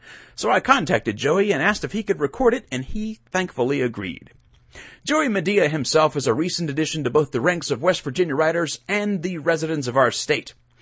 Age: 40-59